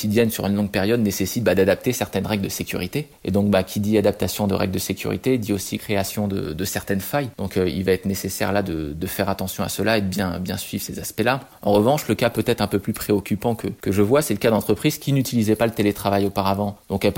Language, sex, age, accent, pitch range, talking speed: French, male, 20-39, French, 95-110 Hz, 255 wpm